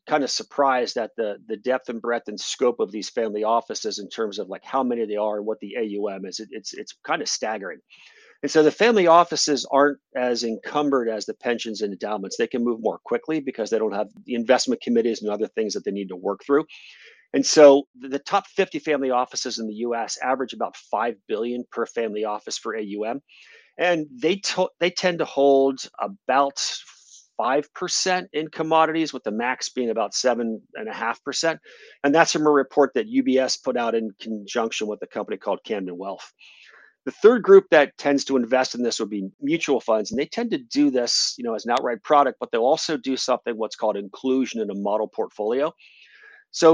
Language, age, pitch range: English, 40-59, 115-160 Hz